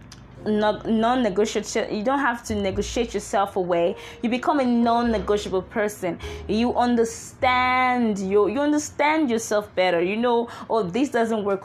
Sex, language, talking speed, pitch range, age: female, English, 135 wpm, 190-235 Hz, 20-39